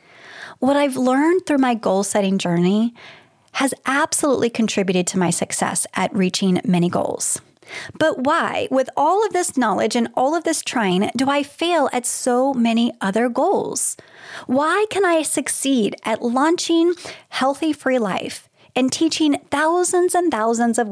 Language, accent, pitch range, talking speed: English, American, 200-295 Hz, 150 wpm